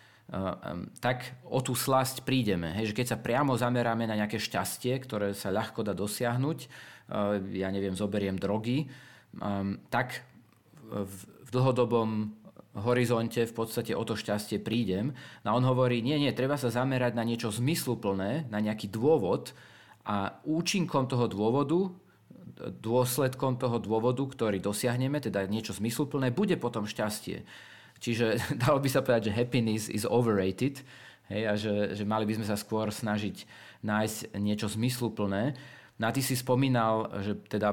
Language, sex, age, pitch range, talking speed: Slovak, male, 40-59, 105-125 Hz, 140 wpm